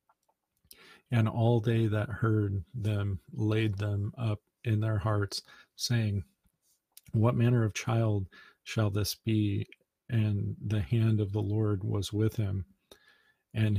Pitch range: 105-115 Hz